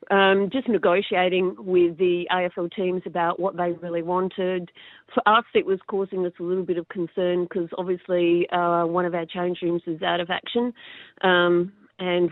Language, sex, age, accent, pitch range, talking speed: English, female, 40-59, Australian, 175-195 Hz, 180 wpm